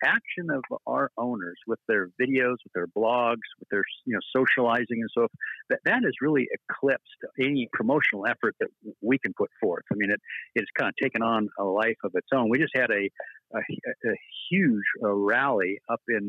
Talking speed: 200 wpm